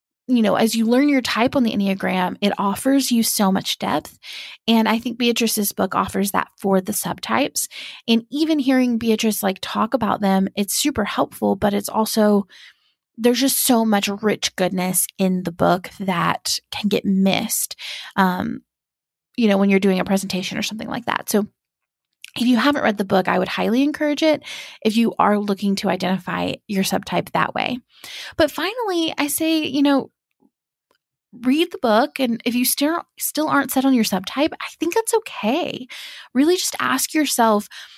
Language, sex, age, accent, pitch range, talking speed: English, female, 20-39, American, 200-260 Hz, 180 wpm